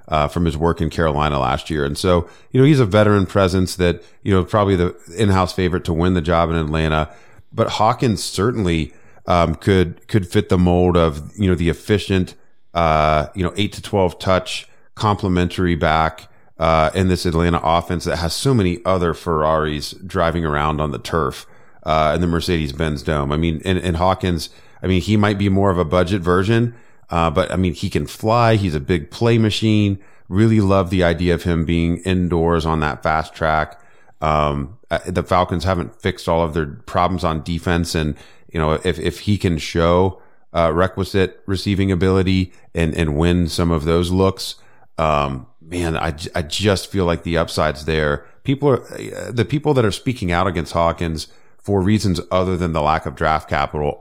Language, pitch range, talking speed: English, 80-95 Hz, 190 wpm